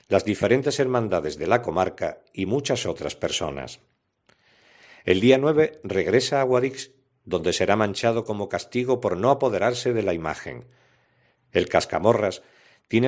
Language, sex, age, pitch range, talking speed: Spanish, male, 50-69, 105-135 Hz, 140 wpm